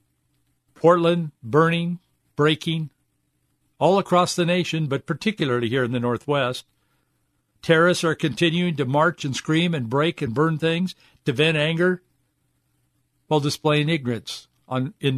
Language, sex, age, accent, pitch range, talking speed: English, male, 60-79, American, 145-190 Hz, 130 wpm